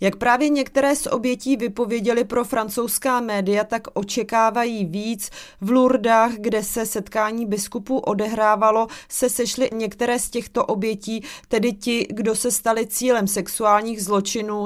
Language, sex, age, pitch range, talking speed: Czech, female, 30-49, 210-240 Hz, 135 wpm